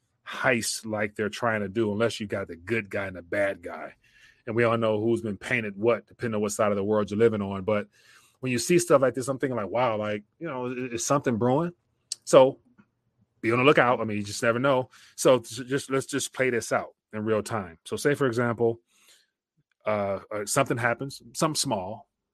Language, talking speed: English, 220 wpm